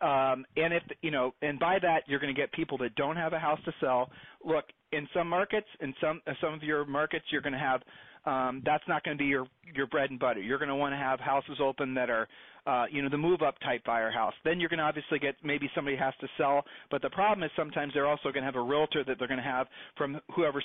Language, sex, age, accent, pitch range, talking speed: English, male, 40-59, American, 140-170 Hz, 275 wpm